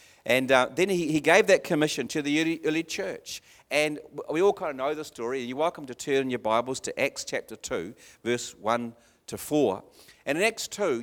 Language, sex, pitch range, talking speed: English, male, 130-175 Hz, 225 wpm